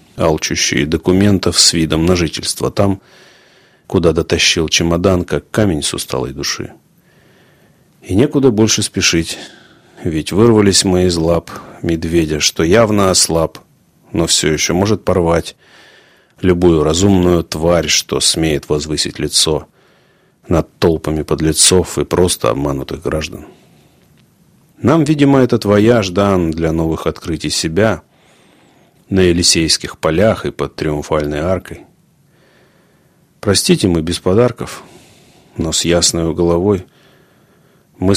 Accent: native